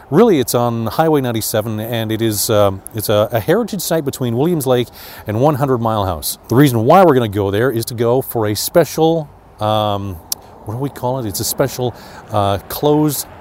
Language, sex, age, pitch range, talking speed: English, male, 40-59, 110-145 Hz, 205 wpm